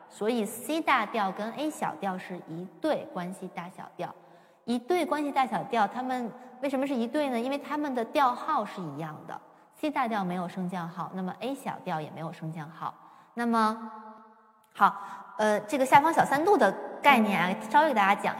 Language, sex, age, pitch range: Chinese, female, 20-39, 190-260 Hz